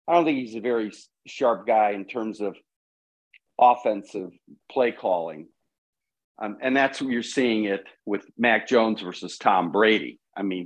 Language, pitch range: English, 115-190 Hz